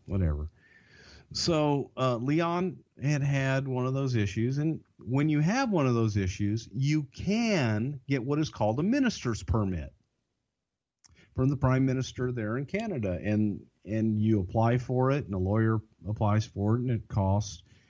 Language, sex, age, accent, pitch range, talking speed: English, male, 50-69, American, 105-130 Hz, 165 wpm